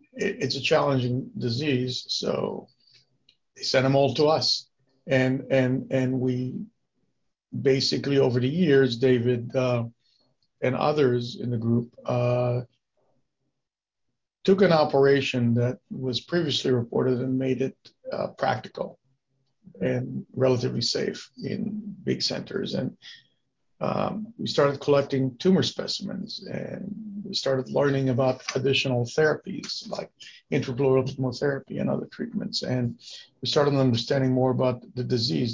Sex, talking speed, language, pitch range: male, 125 wpm, English, 125-145 Hz